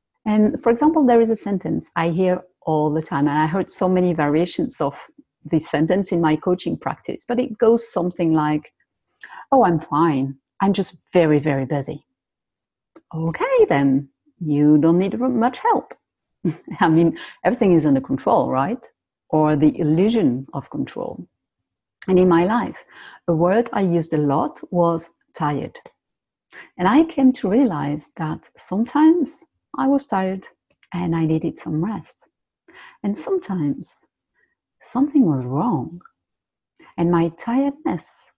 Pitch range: 155-230 Hz